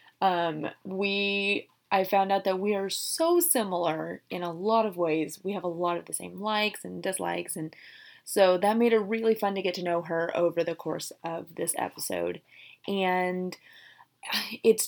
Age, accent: 20-39, American